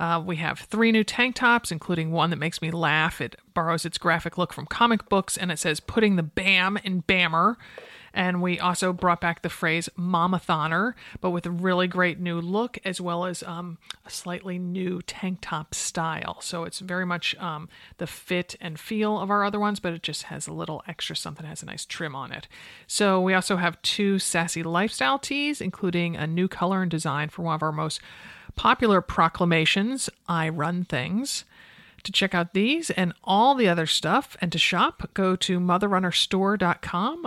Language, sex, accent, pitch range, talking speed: English, male, American, 165-195 Hz, 195 wpm